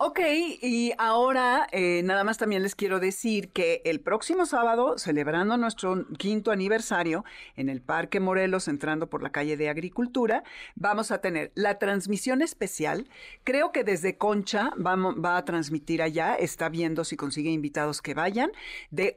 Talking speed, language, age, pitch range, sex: 160 wpm, Spanish, 50-69, 170-230 Hz, female